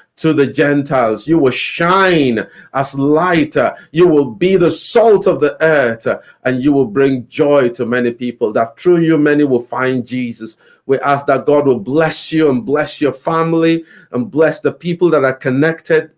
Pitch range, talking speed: 130-165 Hz, 180 wpm